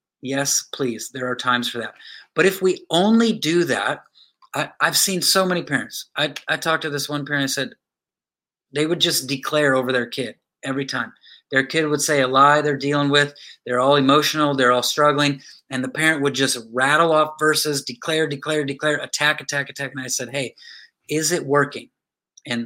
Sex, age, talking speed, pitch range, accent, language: male, 30-49, 195 wpm, 135-175 Hz, American, English